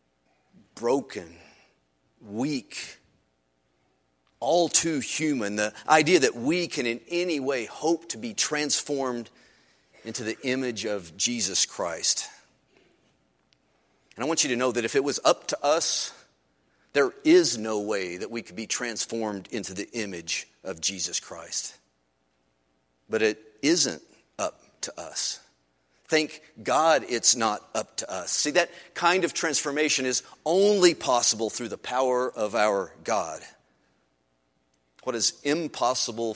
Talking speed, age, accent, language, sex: 135 wpm, 40-59, American, English, male